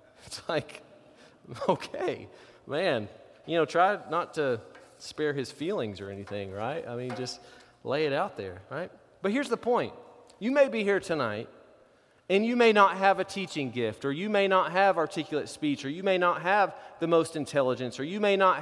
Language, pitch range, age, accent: English, 180-235 Hz, 30-49, American